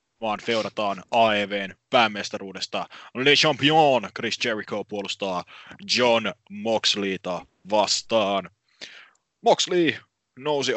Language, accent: English, Finnish